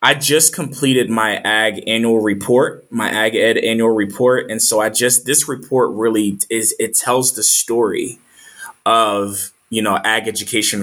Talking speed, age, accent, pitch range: 160 wpm, 20-39, American, 105-120 Hz